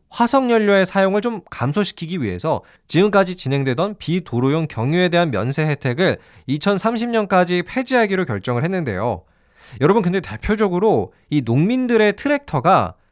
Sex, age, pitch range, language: male, 20-39, 125-210 Hz, Korean